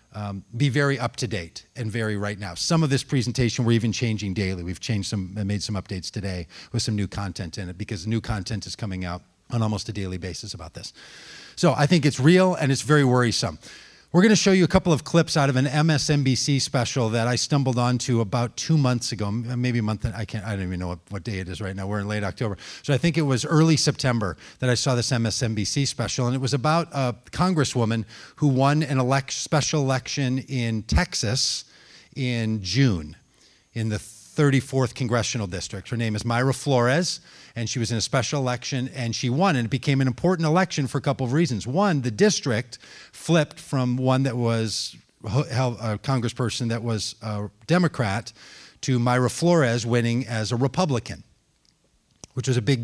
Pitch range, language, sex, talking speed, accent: 110-140 Hz, English, male, 205 wpm, American